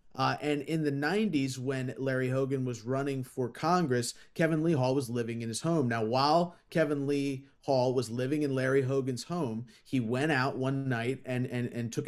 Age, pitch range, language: 30-49, 125-170 Hz, English